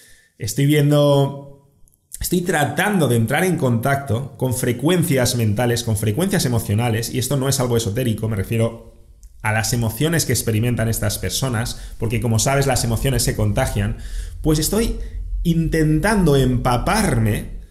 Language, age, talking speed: English, 30-49, 135 wpm